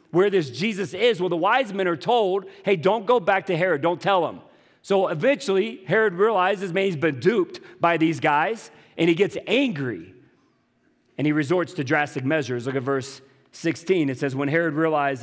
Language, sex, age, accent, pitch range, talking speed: English, male, 40-59, American, 120-165 Hz, 195 wpm